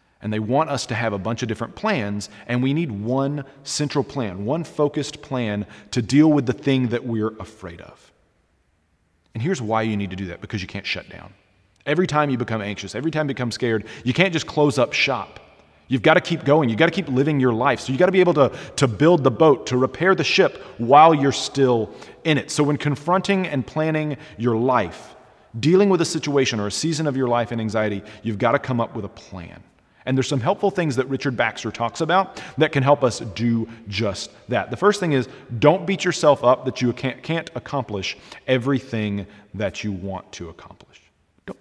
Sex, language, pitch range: male, English, 110-150 Hz